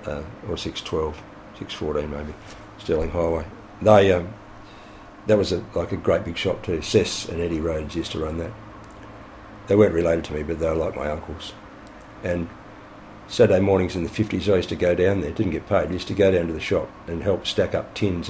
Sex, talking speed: male, 215 wpm